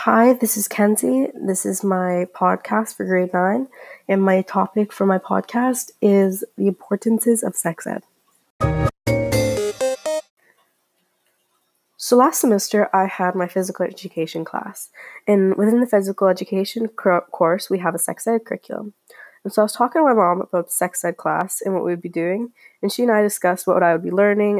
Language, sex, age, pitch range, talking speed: English, female, 20-39, 175-220 Hz, 180 wpm